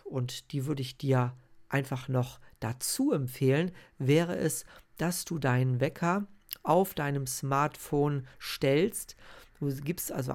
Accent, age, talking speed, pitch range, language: German, 50-69, 130 wpm, 130-160 Hz, German